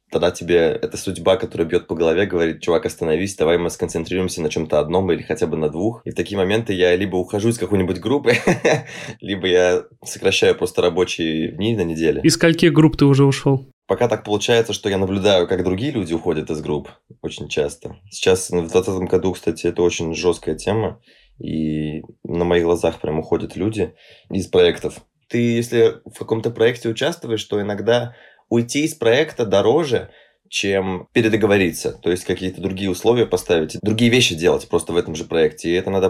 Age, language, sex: 20-39, Russian, male